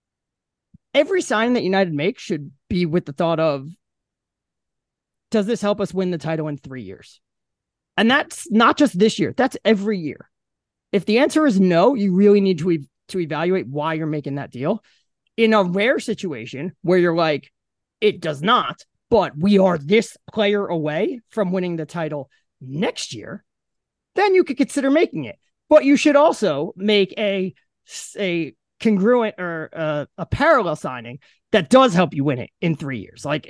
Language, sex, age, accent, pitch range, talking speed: English, male, 30-49, American, 155-215 Hz, 175 wpm